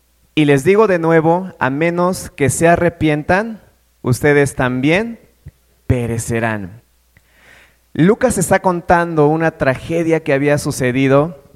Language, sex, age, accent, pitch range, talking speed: Spanish, male, 30-49, Mexican, 130-160 Hz, 110 wpm